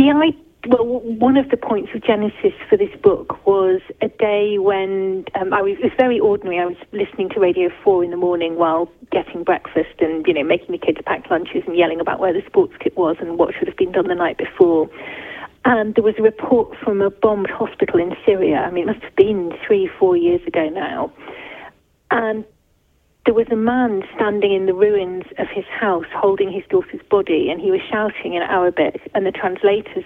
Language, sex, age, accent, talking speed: English, female, 40-59, British, 210 wpm